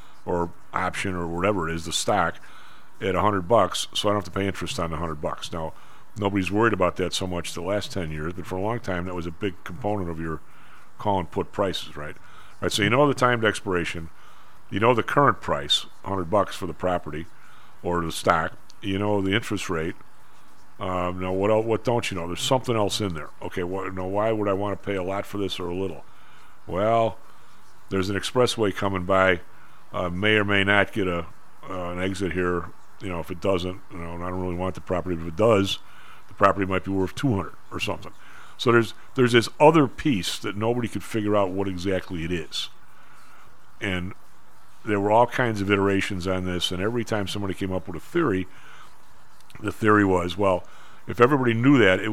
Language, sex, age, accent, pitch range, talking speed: English, male, 50-69, American, 90-105 Hz, 220 wpm